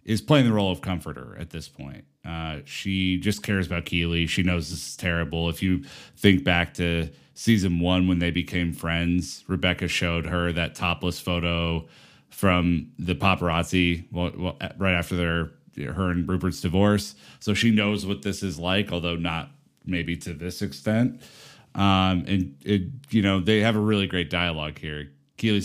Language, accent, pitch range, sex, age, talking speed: English, American, 85-100 Hz, male, 30-49, 175 wpm